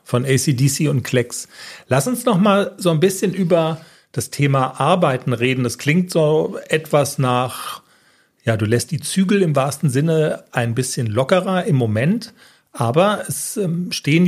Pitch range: 130-175 Hz